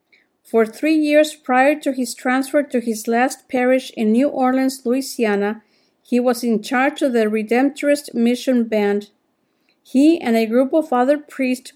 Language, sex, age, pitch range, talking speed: English, female, 50-69, 230-275 Hz, 160 wpm